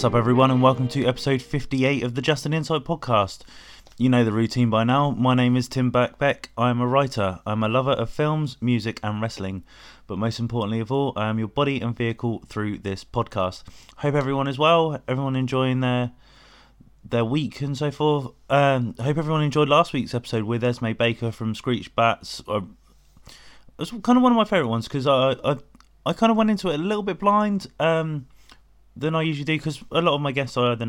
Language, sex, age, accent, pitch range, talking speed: English, male, 20-39, British, 115-140 Hz, 220 wpm